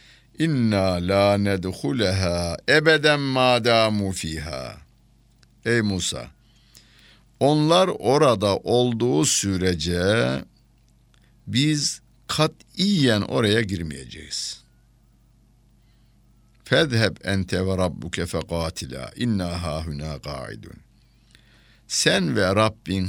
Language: Turkish